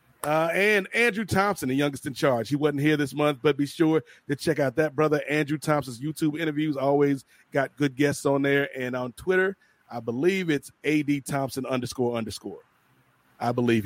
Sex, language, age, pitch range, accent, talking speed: male, English, 30-49, 135-170 Hz, American, 185 wpm